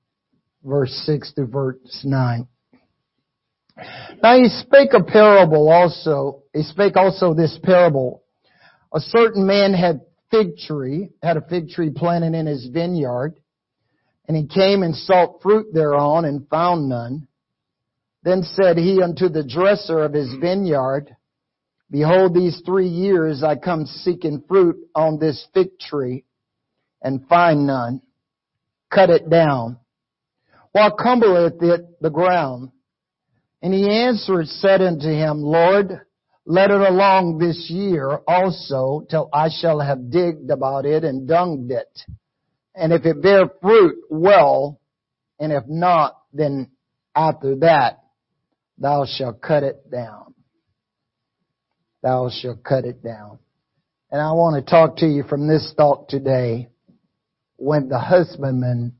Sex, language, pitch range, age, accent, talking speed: male, English, 135-180 Hz, 50-69, American, 135 wpm